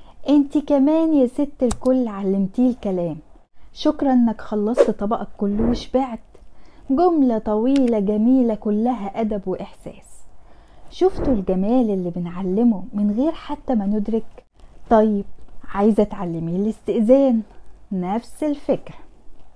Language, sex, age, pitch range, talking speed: Arabic, female, 10-29, 195-265 Hz, 105 wpm